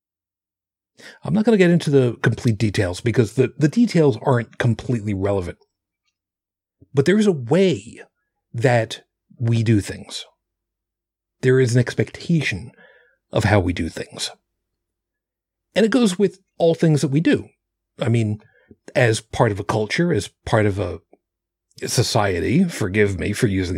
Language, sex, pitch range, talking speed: English, male, 95-160 Hz, 150 wpm